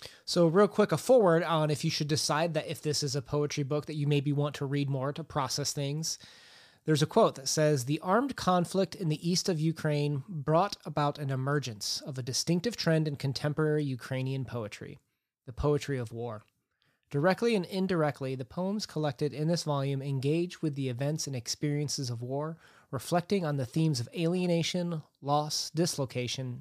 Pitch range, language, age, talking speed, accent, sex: 130-165 Hz, English, 30-49, 185 wpm, American, male